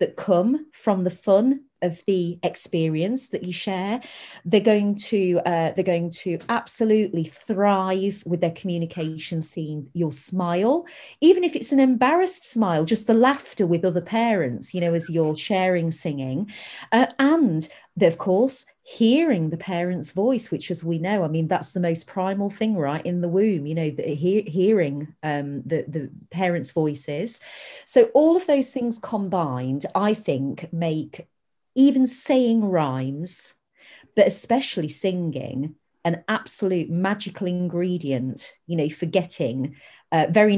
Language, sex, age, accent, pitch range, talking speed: English, female, 40-59, British, 165-230 Hz, 150 wpm